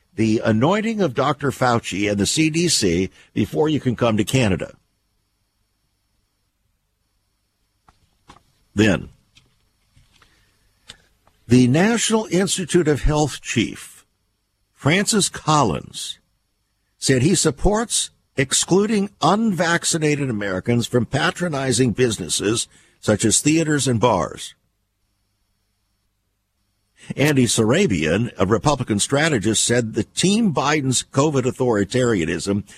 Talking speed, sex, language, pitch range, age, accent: 90 wpm, male, English, 100-135 Hz, 60-79, American